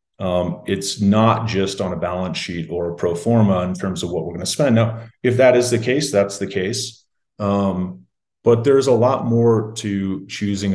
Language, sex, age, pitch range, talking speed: English, male, 30-49, 95-115 Hz, 205 wpm